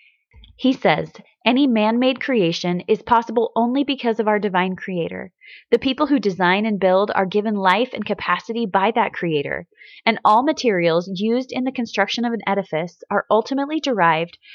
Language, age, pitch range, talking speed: English, 20-39, 190-235 Hz, 165 wpm